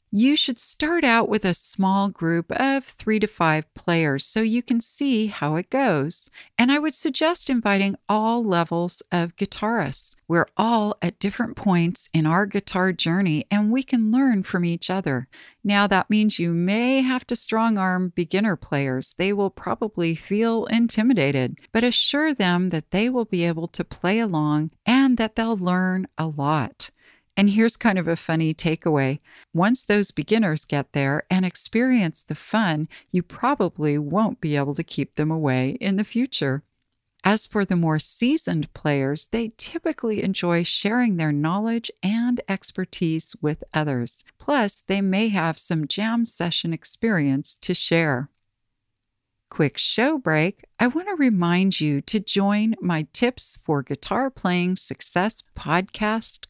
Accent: American